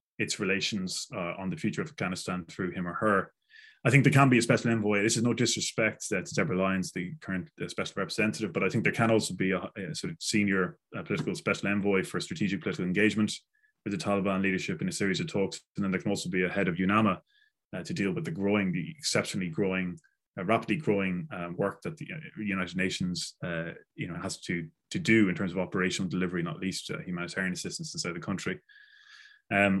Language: English